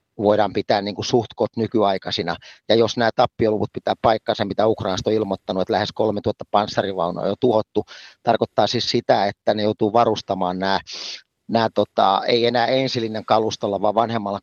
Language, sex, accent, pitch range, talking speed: Finnish, male, native, 105-125 Hz, 160 wpm